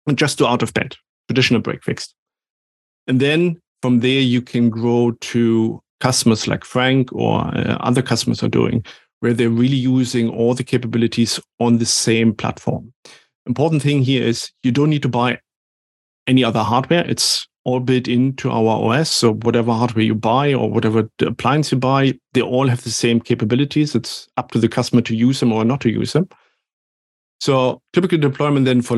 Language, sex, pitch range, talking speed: English, male, 115-130 Hz, 185 wpm